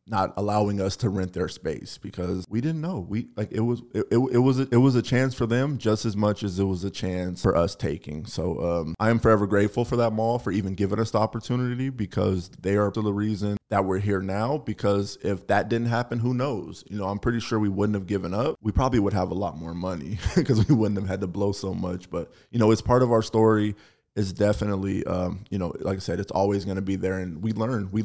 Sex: male